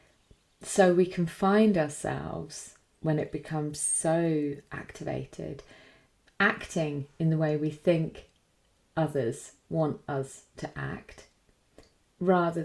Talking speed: 105 wpm